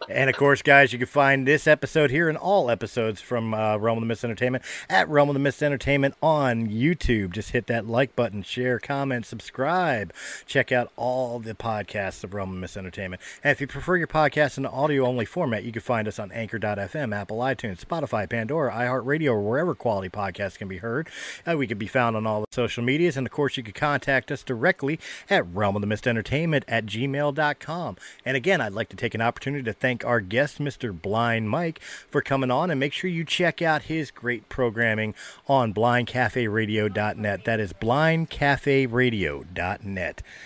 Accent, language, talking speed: American, English, 200 wpm